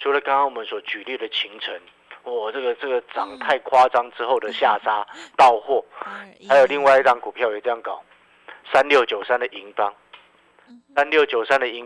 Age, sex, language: 50-69, male, Chinese